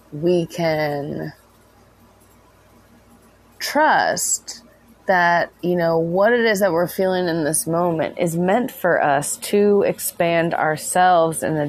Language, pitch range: English, 160-195 Hz